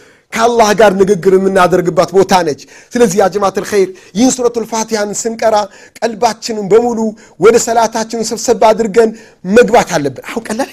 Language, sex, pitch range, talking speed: Amharic, male, 215-275 Hz, 125 wpm